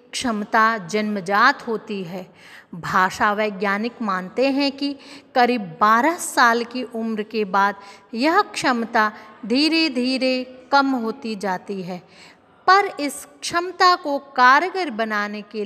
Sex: female